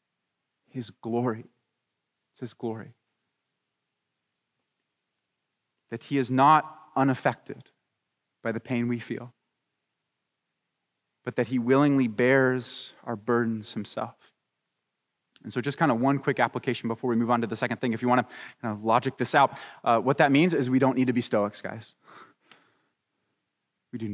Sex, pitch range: male, 120-140 Hz